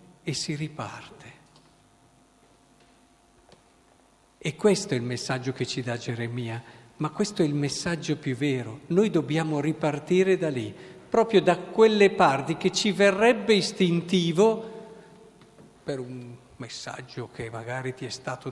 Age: 50-69